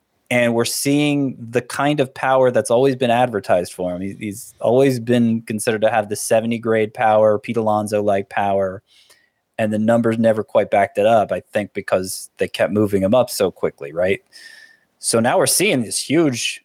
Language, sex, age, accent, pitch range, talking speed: English, male, 20-39, American, 100-125 Hz, 185 wpm